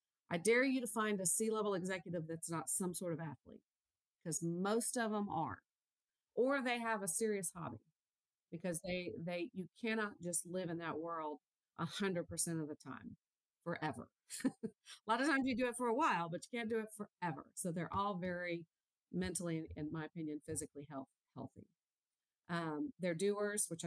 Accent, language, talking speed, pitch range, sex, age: American, English, 185 wpm, 160-195 Hz, female, 40-59